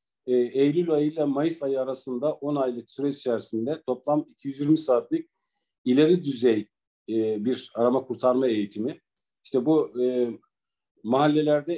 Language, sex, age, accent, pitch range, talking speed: Turkish, male, 50-69, native, 125-155 Hz, 125 wpm